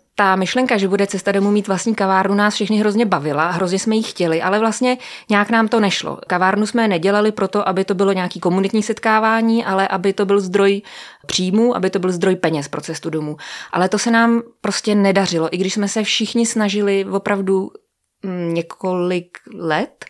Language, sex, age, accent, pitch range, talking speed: Czech, female, 20-39, native, 180-210 Hz, 185 wpm